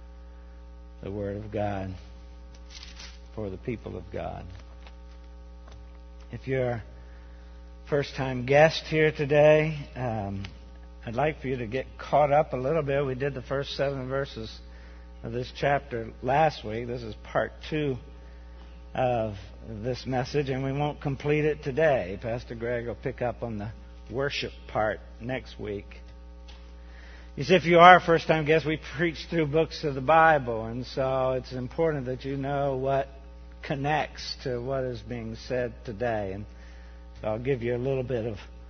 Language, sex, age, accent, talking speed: English, male, 60-79, American, 160 wpm